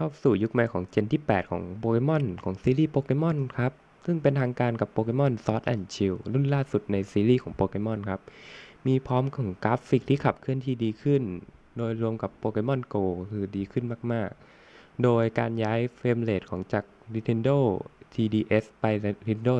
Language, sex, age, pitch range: Thai, male, 20-39, 100-120 Hz